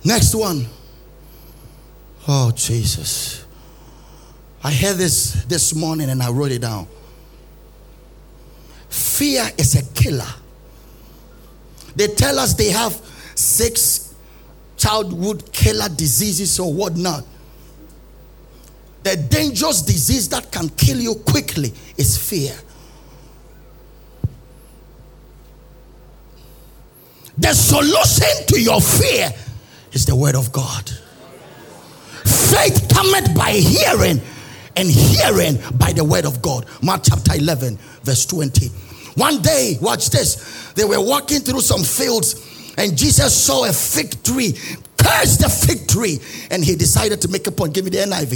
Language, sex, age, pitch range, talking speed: English, male, 50-69, 125-185 Hz, 120 wpm